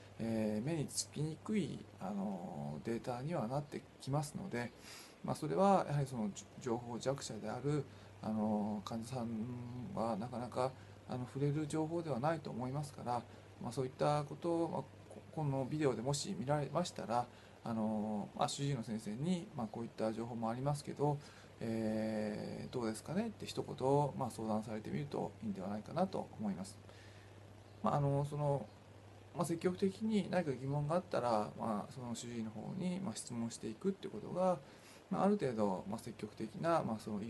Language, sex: Japanese, male